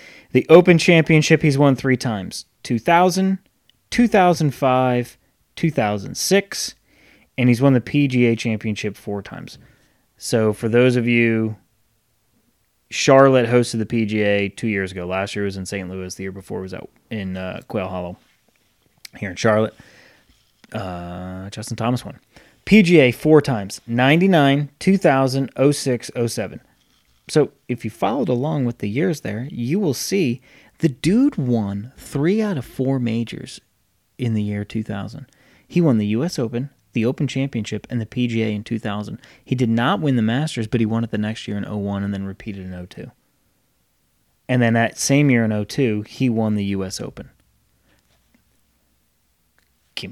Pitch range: 105-135 Hz